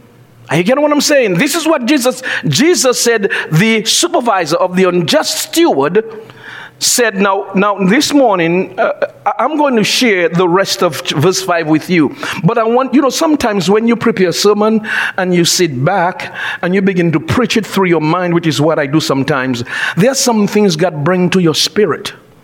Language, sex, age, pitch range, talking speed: English, male, 50-69, 160-210 Hz, 195 wpm